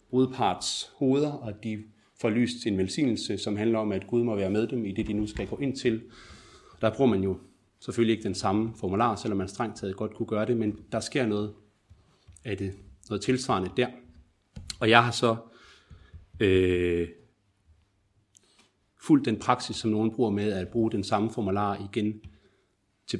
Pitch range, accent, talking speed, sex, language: 95-115 Hz, native, 180 wpm, male, Danish